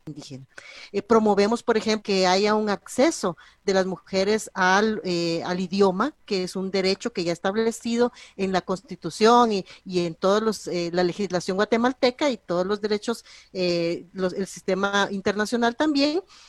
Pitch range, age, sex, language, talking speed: 180-225 Hz, 40-59, female, Spanish, 165 wpm